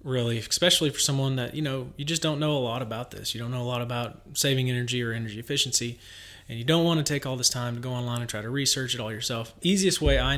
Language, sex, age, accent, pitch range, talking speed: English, male, 30-49, American, 105-125 Hz, 275 wpm